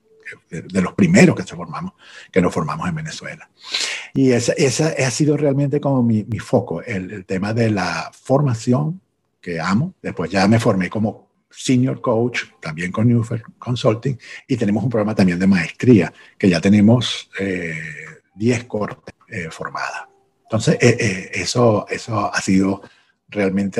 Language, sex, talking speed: Spanish, male, 160 wpm